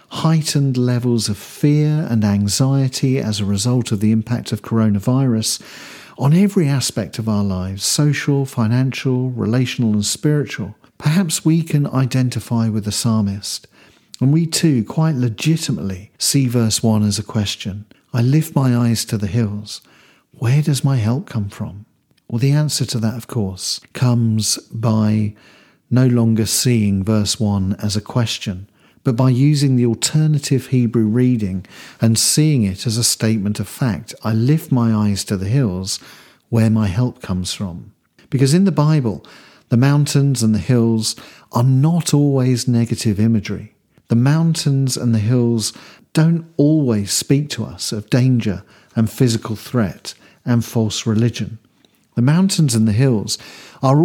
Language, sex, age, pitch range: English, male, 50-69, 110-140 Hz